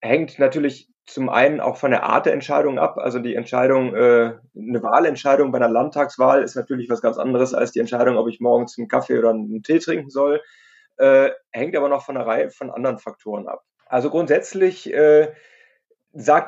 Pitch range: 125-155 Hz